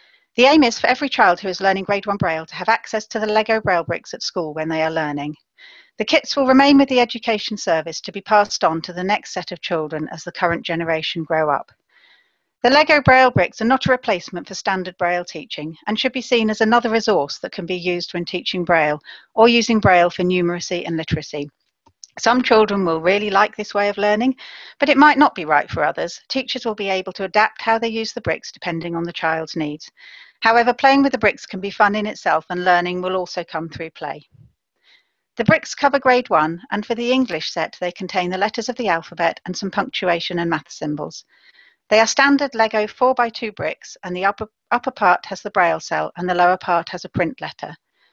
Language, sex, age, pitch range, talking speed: English, female, 40-59, 175-240 Hz, 225 wpm